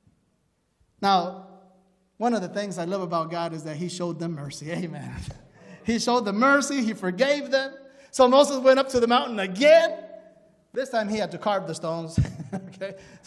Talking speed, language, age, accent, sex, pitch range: 180 wpm, English, 30-49, American, male, 170-225 Hz